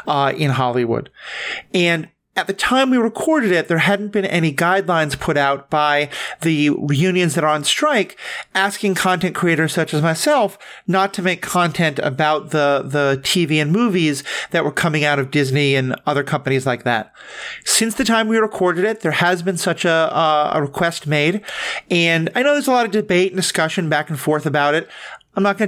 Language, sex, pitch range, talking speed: English, male, 150-190 Hz, 195 wpm